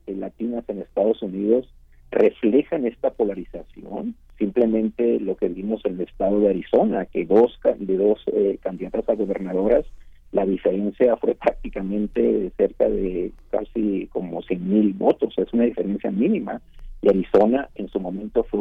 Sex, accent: male, Mexican